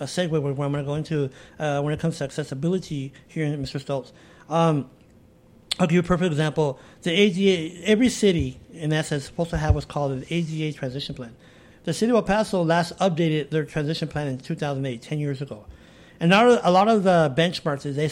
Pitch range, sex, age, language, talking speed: 145-180 Hz, male, 50-69, English, 215 wpm